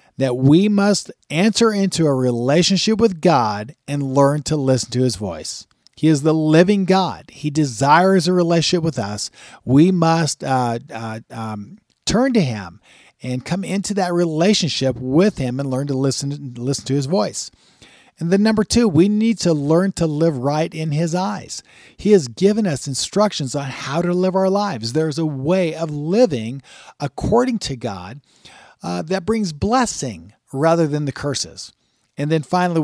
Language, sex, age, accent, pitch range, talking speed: English, male, 40-59, American, 120-170 Hz, 170 wpm